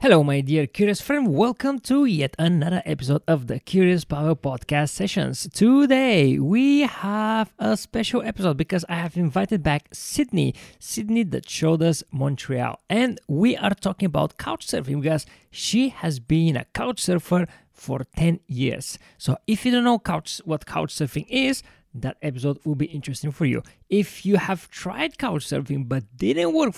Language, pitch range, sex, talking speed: English, 145-225 Hz, male, 160 wpm